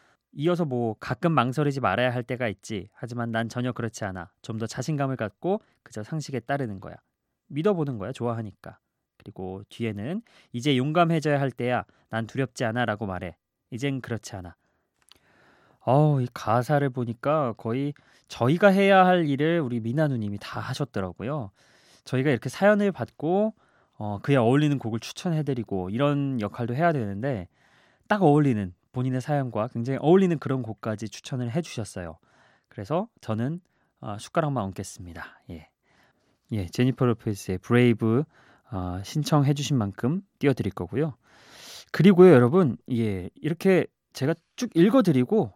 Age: 20-39